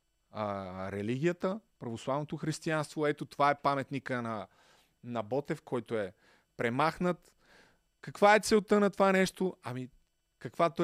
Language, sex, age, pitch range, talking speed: Bulgarian, male, 30-49, 125-165 Hz, 120 wpm